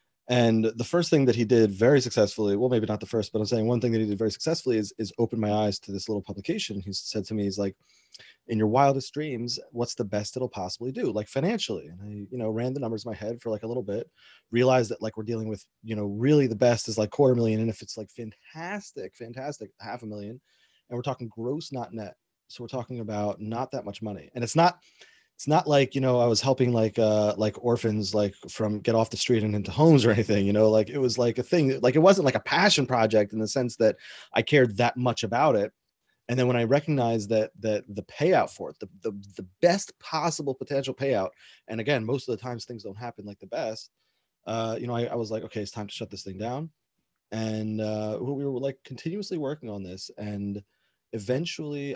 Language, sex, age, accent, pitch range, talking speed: English, male, 30-49, American, 105-130 Hz, 245 wpm